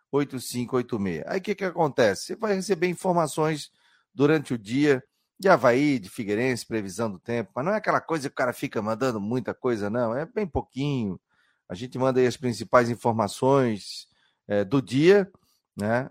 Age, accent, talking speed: 40-59, Brazilian, 175 wpm